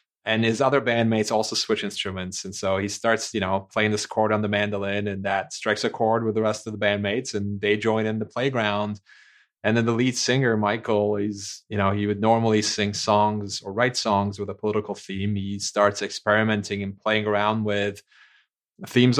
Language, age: English, 30-49